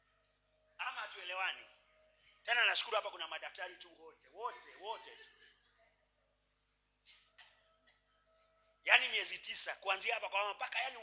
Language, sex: Swahili, male